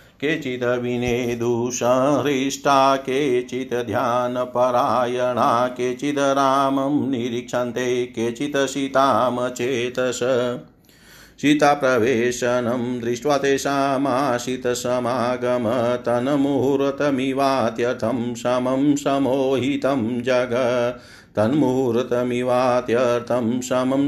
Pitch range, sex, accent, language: 125-145 Hz, male, native, Hindi